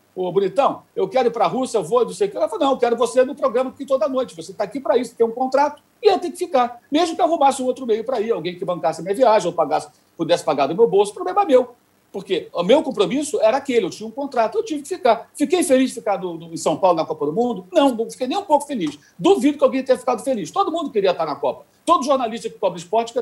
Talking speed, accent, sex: 290 wpm, Brazilian, male